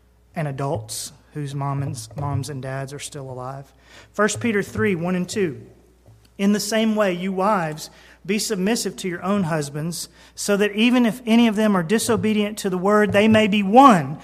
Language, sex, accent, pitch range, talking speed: English, male, American, 155-205 Hz, 185 wpm